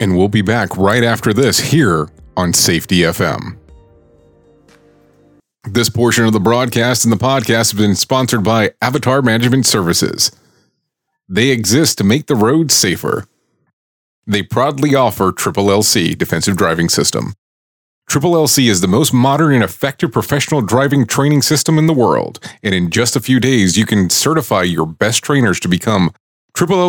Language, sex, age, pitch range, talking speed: English, male, 30-49, 105-140 Hz, 160 wpm